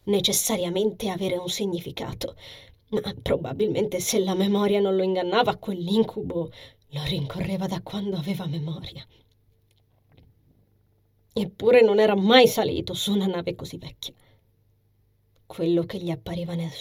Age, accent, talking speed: 30-49, native, 120 wpm